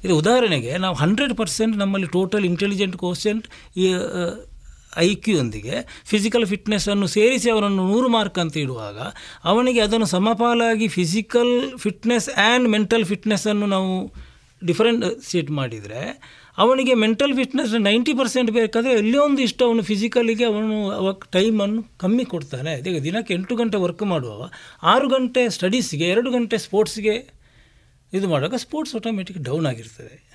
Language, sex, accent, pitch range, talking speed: Kannada, male, native, 165-230 Hz, 130 wpm